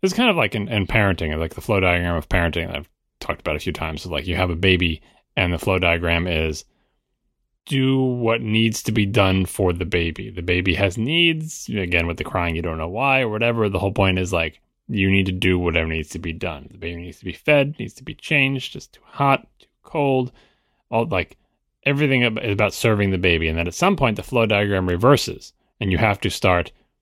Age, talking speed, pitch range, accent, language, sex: 30-49, 235 wpm, 85-120 Hz, American, English, male